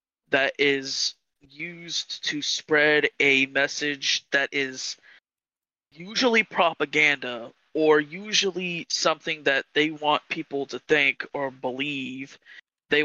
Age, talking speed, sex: 20-39, 105 wpm, male